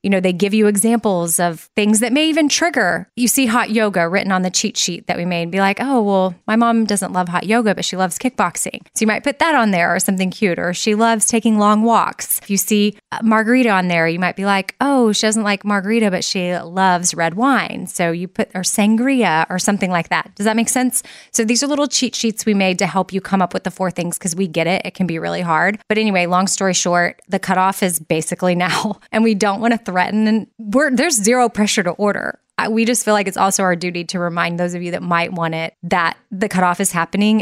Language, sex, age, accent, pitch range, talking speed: English, female, 20-39, American, 180-215 Hz, 255 wpm